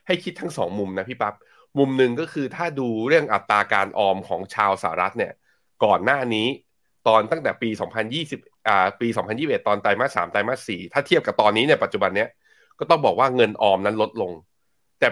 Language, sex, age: Thai, male, 20-39